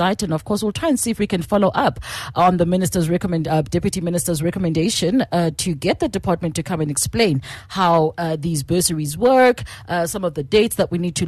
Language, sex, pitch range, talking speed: English, female, 165-230 Hz, 230 wpm